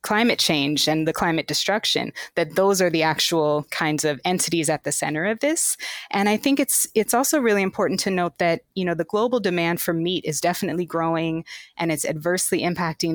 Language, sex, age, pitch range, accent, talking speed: English, female, 20-39, 160-190 Hz, American, 200 wpm